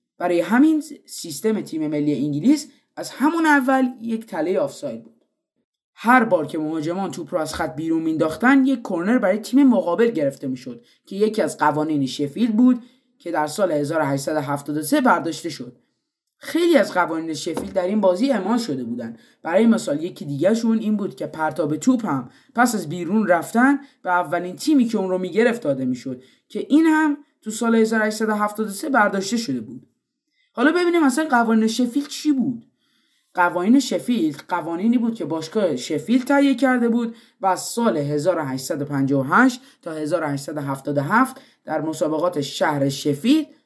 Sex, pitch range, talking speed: male, 155-265 Hz, 155 wpm